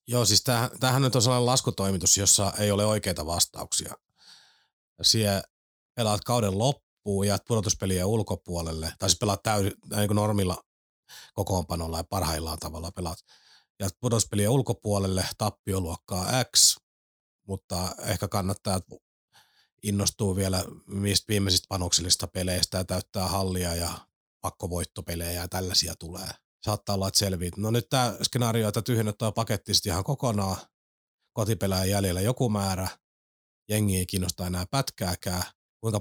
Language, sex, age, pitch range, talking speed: Finnish, male, 30-49, 90-105 Hz, 125 wpm